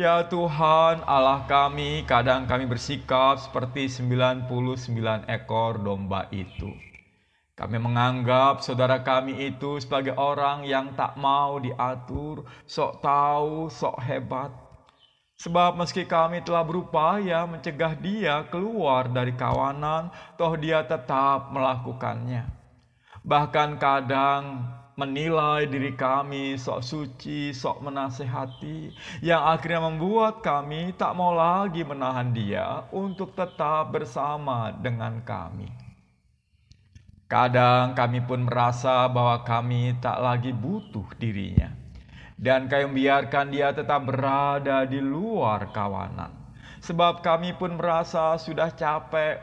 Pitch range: 125-155 Hz